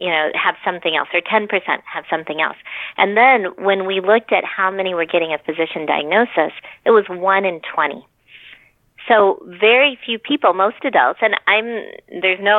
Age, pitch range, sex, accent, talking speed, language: 30-49, 170-215 Hz, female, American, 180 wpm, English